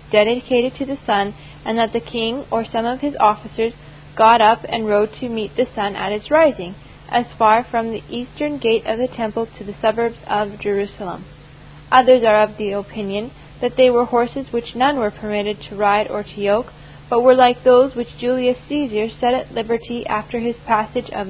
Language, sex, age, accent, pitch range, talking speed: English, female, 10-29, American, 205-250 Hz, 195 wpm